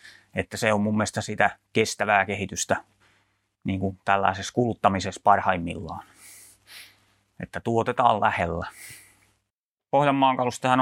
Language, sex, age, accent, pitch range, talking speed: Finnish, male, 30-49, native, 100-130 Hz, 95 wpm